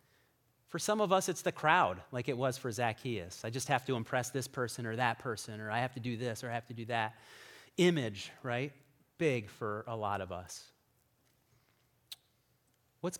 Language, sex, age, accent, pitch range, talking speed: English, male, 30-49, American, 115-155 Hz, 195 wpm